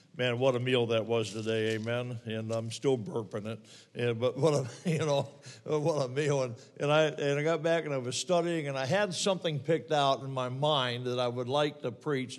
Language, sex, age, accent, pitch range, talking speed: English, male, 60-79, American, 125-150 Hz, 230 wpm